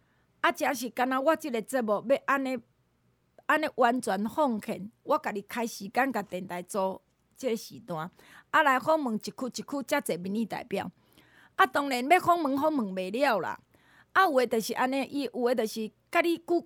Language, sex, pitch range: Chinese, female, 215-300 Hz